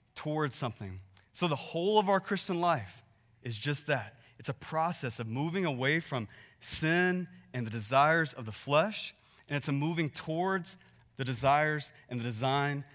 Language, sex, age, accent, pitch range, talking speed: English, male, 20-39, American, 120-165 Hz, 165 wpm